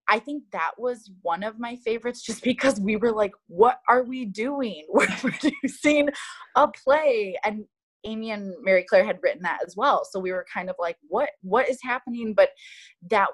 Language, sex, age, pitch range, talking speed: English, female, 20-39, 180-255 Hz, 195 wpm